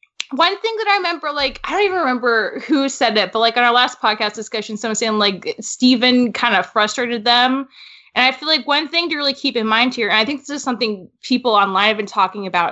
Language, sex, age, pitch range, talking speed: English, female, 10-29, 225-305 Hz, 245 wpm